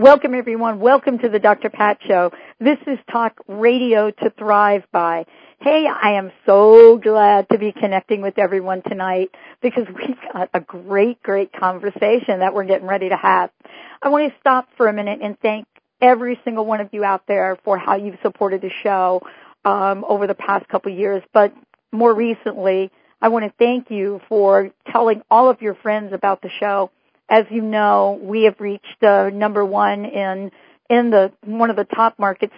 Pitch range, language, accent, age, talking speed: 195-225 Hz, English, American, 50-69, 190 wpm